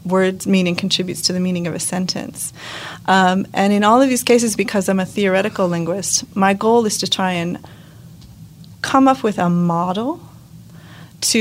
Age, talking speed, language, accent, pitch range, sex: 30-49, 175 wpm, English, American, 180-205 Hz, female